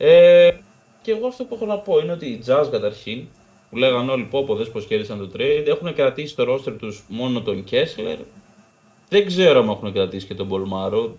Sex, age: male, 20-39